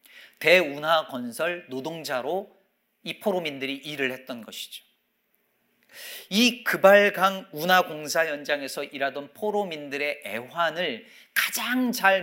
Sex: male